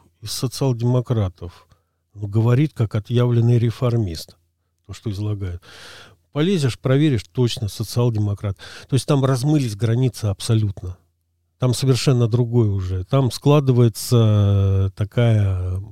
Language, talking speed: Russian, 100 wpm